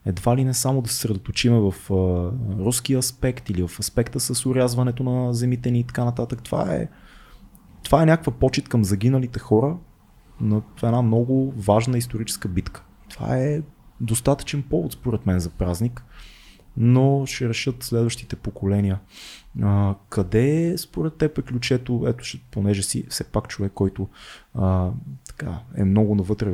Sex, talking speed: male, 150 wpm